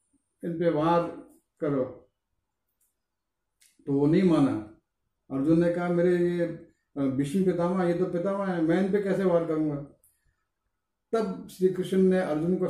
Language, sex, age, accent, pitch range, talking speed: Hindi, male, 50-69, native, 135-180 Hz, 135 wpm